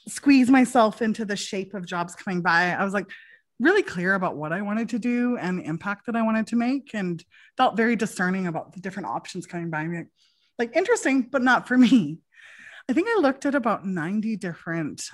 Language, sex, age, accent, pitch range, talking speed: English, female, 20-39, American, 175-250 Hz, 210 wpm